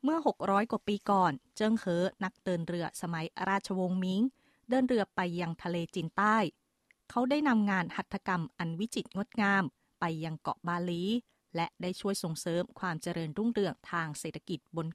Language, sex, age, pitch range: Thai, female, 20-39, 175-220 Hz